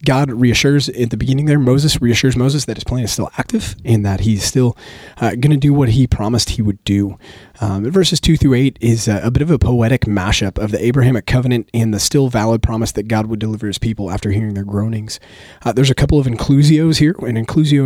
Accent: American